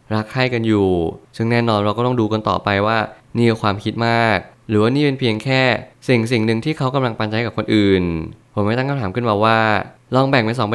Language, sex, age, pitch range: Thai, male, 20-39, 100-120 Hz